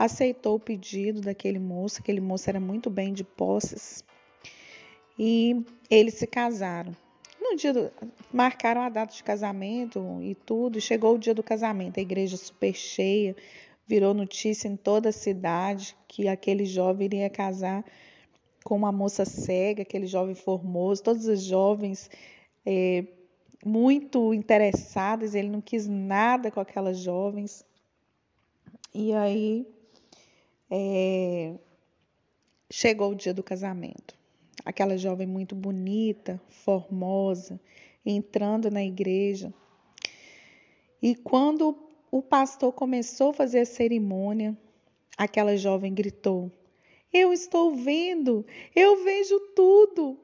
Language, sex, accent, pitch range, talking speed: Portuguese, female, Brazilian, 195-240 Hz, 120 wpm